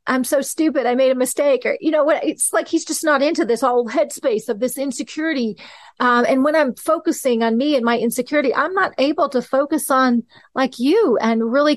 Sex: female